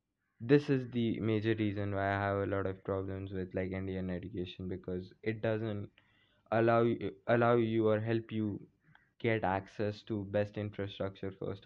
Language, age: English, 20-39